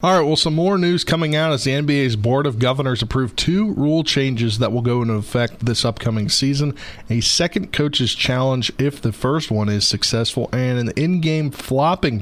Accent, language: American, English